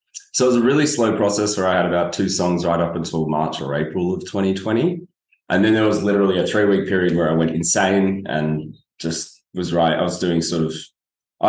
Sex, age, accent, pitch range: male, 20-39, Australian, 85-105 Hz